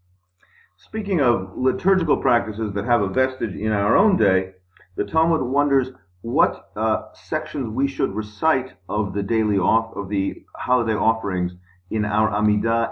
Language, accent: English, American